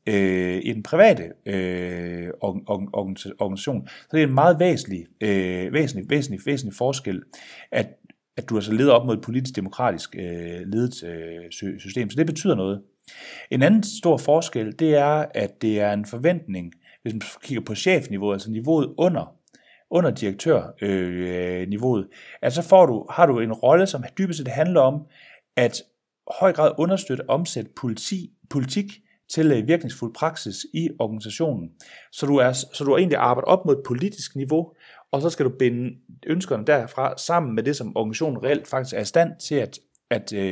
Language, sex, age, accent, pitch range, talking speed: Danish, male, 30-49, native, 105-155 Hz, 155 wpm